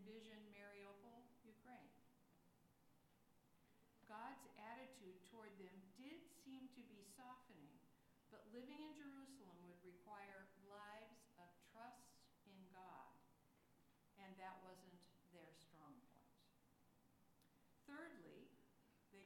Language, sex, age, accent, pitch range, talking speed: English, female, 60-79, American, 190-250 Hz, 95 wpm